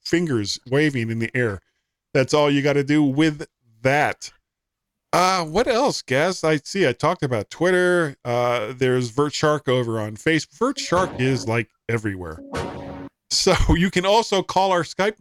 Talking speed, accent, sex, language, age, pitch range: 165 wpm, American, male, English, 40-59, 120-165 Hz